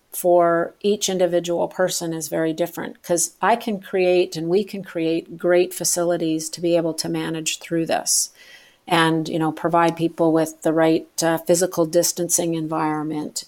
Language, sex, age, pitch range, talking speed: English, female, 50-69, 165-185 Hz, 160 wpm